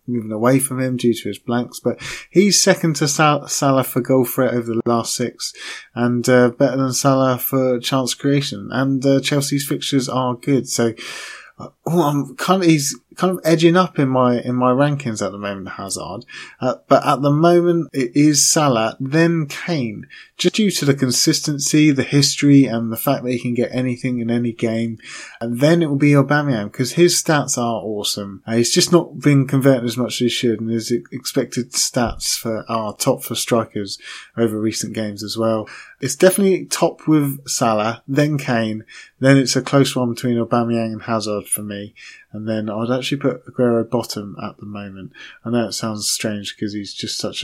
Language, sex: English, male